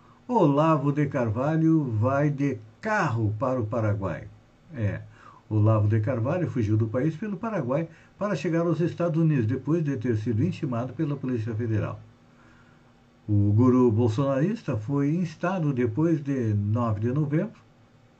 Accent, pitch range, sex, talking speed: Brazilian, 110-155 Hz, male, 135 wpm